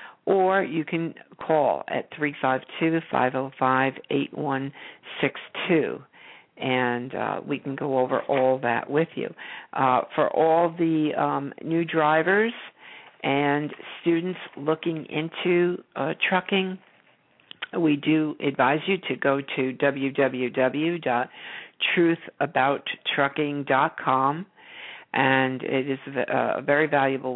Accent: American